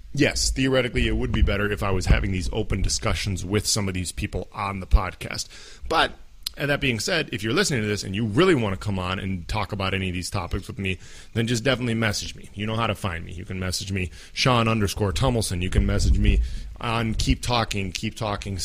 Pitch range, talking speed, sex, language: 95-120 Hz, 235 wpm, male, English